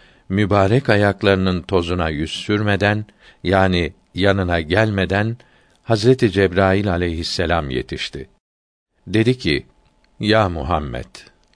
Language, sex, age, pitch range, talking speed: Turkish, male, 60-79, 85-105 Hz, 85 wpm